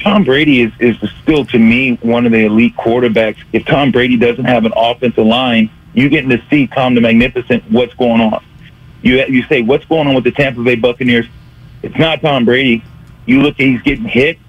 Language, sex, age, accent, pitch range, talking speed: English, male, 40-59, American, 125-155 Hz, 210 wpm